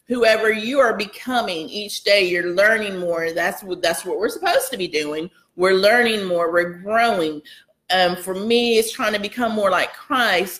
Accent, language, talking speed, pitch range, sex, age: American, English, 185 wpm, 180-240 Hz, female, 30-49